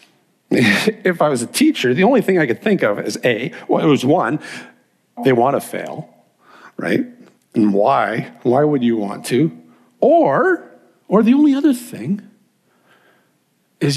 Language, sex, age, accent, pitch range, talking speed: English, male, 50-69, American, 145-215 Hz, 160 wpm